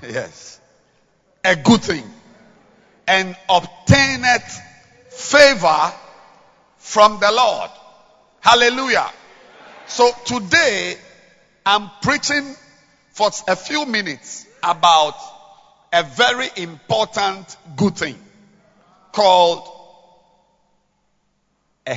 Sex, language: male, English